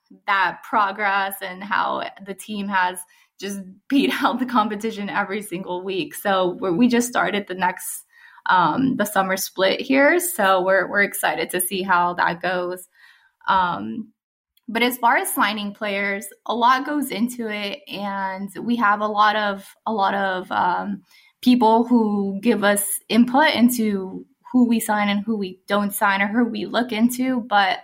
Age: 20-39